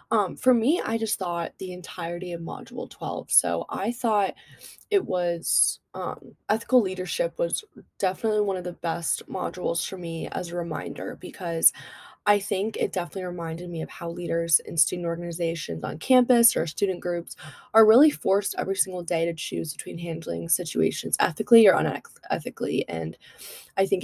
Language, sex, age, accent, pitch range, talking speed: English, female, 20-39, American, 170-205 Hz, 165 wpm